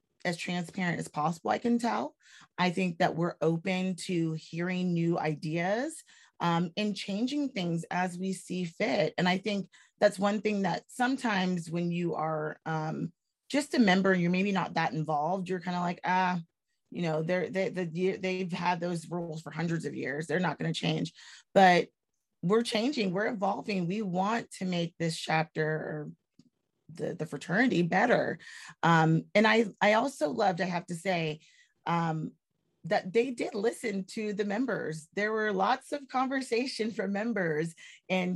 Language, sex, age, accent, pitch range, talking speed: English, female, 30-49, American, 170-210 Hz, 170 wpm